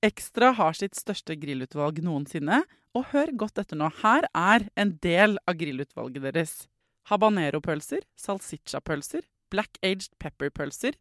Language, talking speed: English, 135 wpm